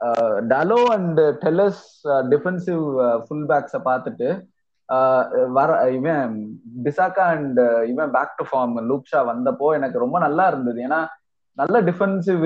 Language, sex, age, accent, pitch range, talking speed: Tamil, male, 20-39, native, 125-165 Hz, 100 wpm